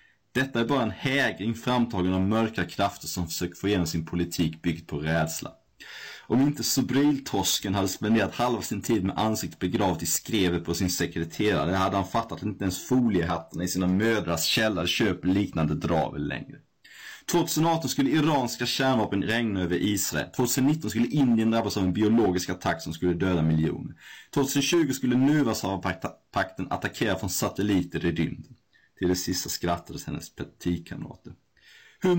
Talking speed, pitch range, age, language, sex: 155 wpm, 90-125 Hz, 30-49, Swedish, male